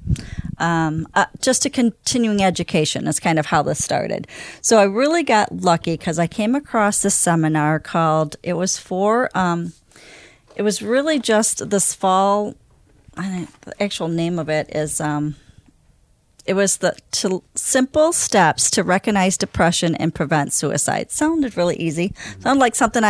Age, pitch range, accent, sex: 40-59, 160-210 Hz, American, female